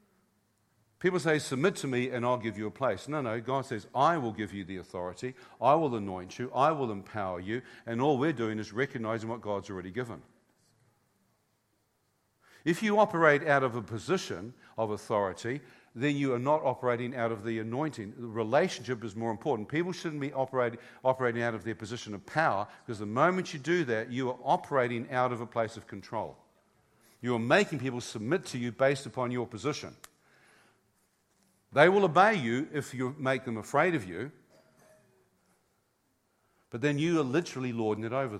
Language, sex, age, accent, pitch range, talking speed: English, male, 50-69, Australian, 115-155 Hz, 185 wpm